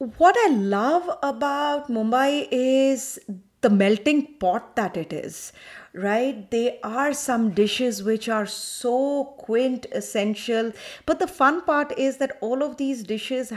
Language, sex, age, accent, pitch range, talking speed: English, female, 30-49, Indian, 220-265 Hz, 135 wpm